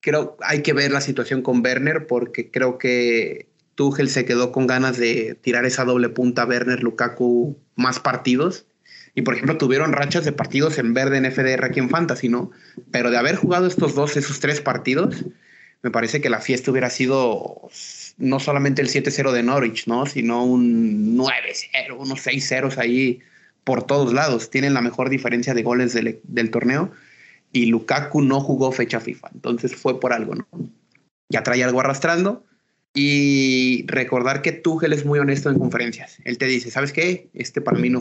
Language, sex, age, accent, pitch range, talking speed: Spanish, male, 30-49, Mexican, 120-145 Hz, 180 wpm